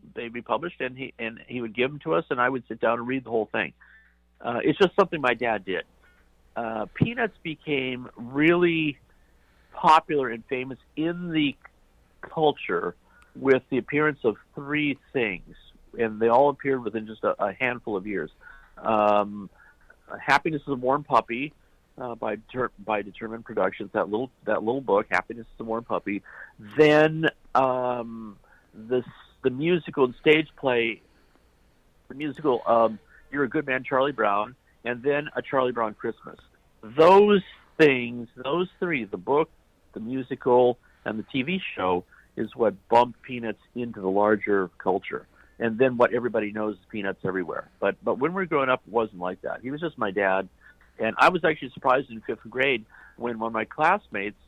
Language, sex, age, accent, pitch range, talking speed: English, male, 50-69, American, 110-140 Hz, 175 wpm